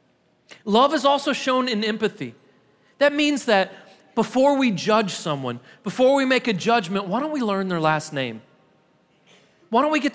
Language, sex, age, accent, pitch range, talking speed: English, male, 30-49, American, 150-220 Hz, 170 wpm